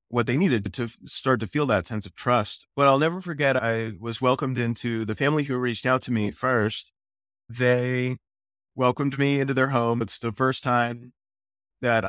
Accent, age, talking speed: American, 30-49, 190 wpm